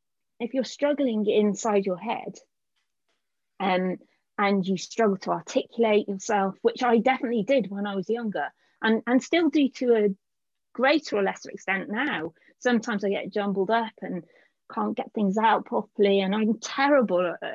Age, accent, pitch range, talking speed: 30-49, British, 200-260 Hz, 155 wpm